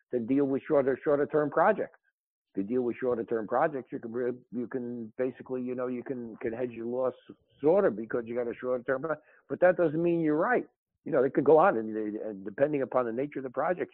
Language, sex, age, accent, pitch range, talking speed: English, male, 60-79, American, 115-145 Hz, 225 wpm